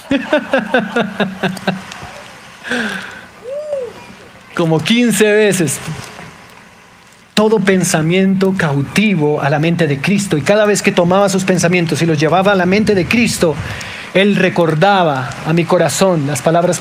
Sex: male